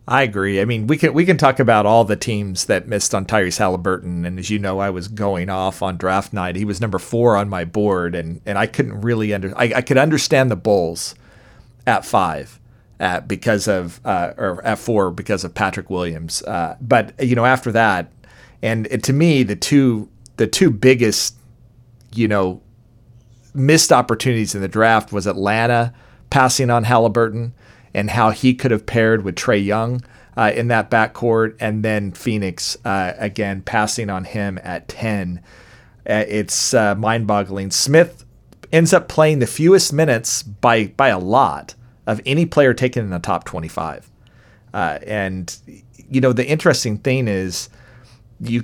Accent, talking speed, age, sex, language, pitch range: American, 175 wpm, 40-59, male, English, 100-125 Hz